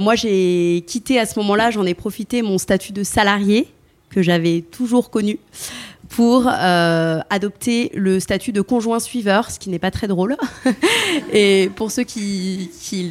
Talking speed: 165 wpm